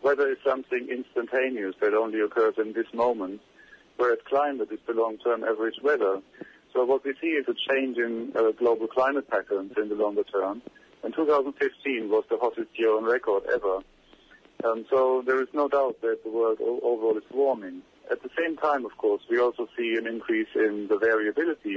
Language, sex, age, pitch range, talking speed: English, male, 50-69, 110-140 Hz, 190 wpm